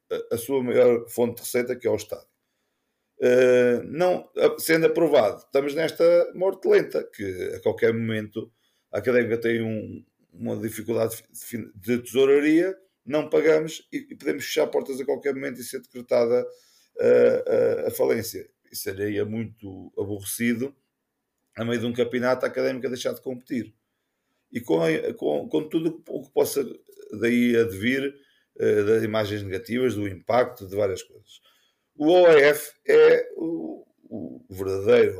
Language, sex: Portuguese, male